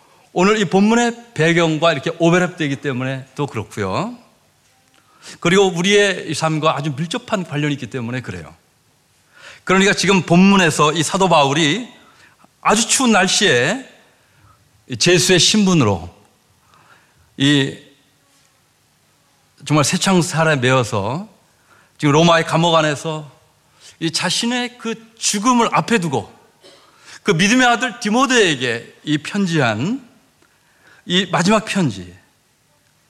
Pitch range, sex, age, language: 135-190 Hz, male, 40-59, Korean